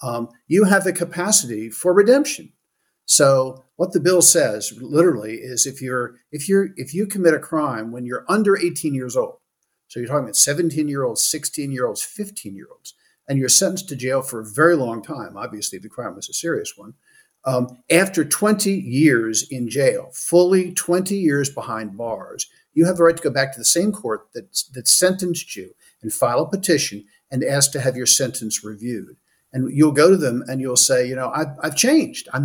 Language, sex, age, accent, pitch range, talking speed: English, male, 50-69, American, 130-180 Hz, 190 wpm